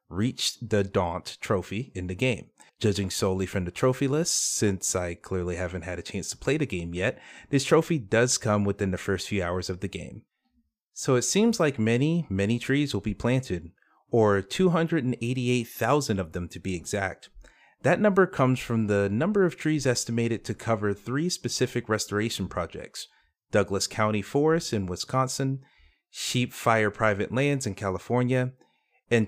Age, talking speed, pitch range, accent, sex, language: 30-49, 165 wpm, 95-130 Hz, American, male, English